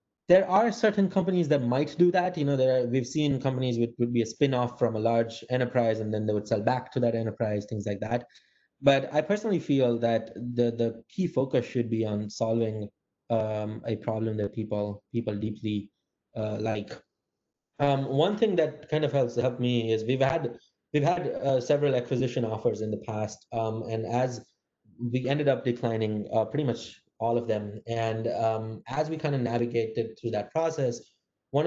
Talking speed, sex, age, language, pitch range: 195 wpm, male, 20-39, English, 110-135 Hz